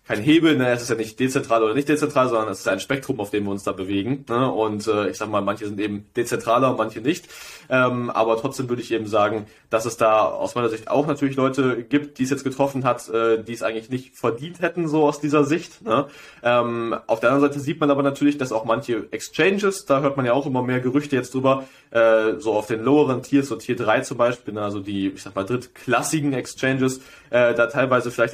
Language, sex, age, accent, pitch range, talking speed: German, male, 20-39, German, 115-140 Hz, 240 wpm